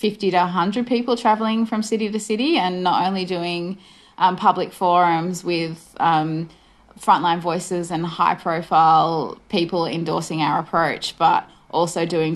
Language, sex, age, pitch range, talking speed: English, female, 20-39, 165-185 Hz, 145 wpm